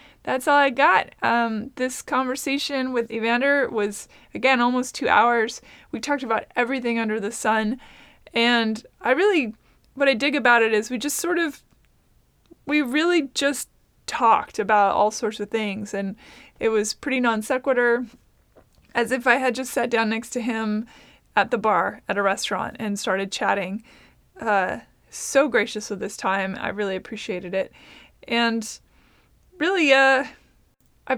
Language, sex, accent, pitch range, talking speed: English, female, American, 215-260 Hz, 160 wpm